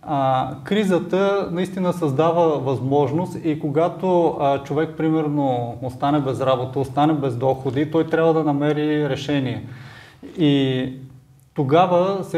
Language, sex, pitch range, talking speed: Bulgarian, male, 135-160 Hz, 115 wpm